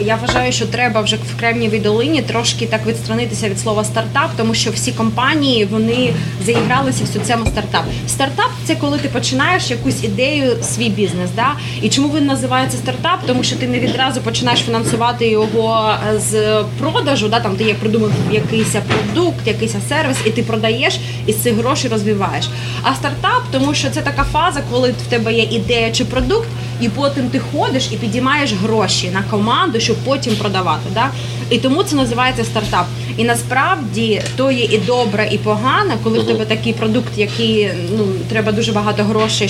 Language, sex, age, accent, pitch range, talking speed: Ukrainian, female, 20-39, native, 110-125 Hz, 180 wpm